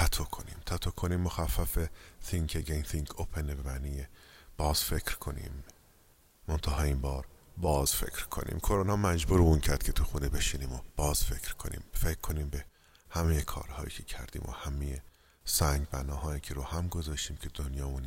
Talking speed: 155 wpm